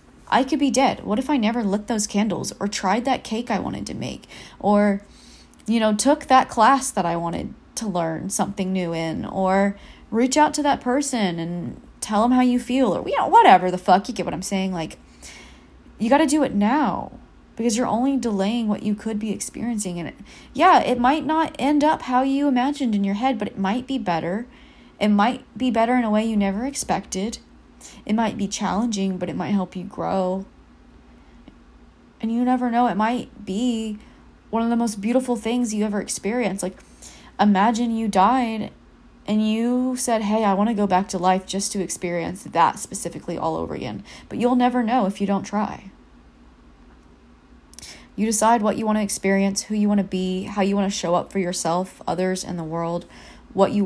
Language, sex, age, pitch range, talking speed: English, female, 30-49, 195-245 Hz, 205 wpm